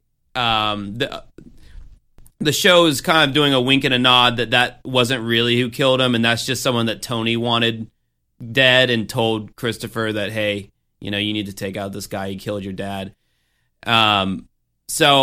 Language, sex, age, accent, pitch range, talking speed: English, male, 30-49, American, 105-130 Hz, 190 wpm